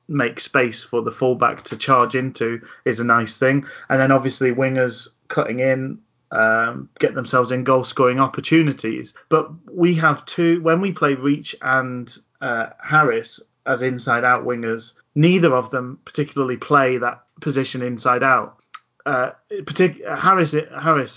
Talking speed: 150 wpm